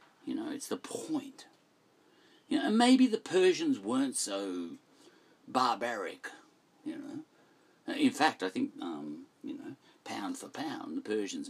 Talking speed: 145 wpm